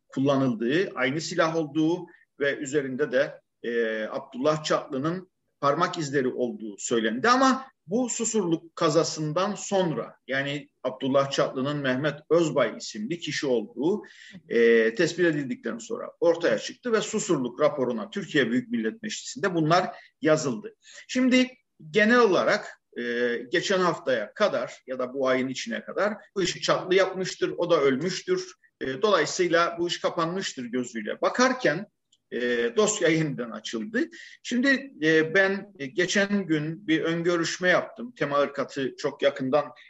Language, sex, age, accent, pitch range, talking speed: Turkish, male, 50-69, native, 135-190 Hz, 130 wpm